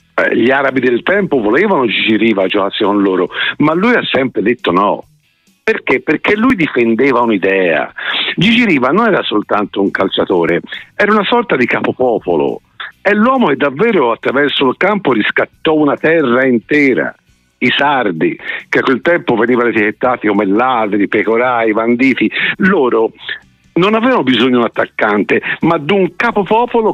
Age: 50-69